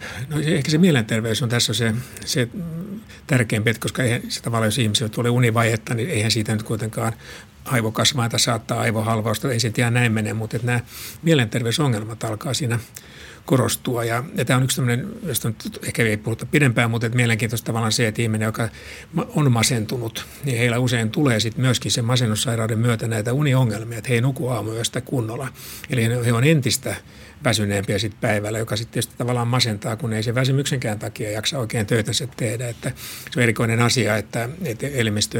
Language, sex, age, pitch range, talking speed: Finnish, male, 60-79, 115-125 Hz, 175 wpm